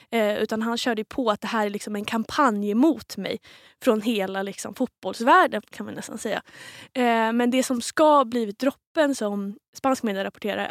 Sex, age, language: female, 20-39, Swedish